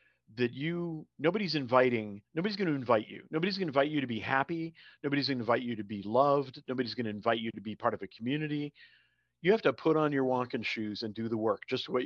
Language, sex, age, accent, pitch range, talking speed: English, male, 40-59, American, 115-150 Hz, 250 wpm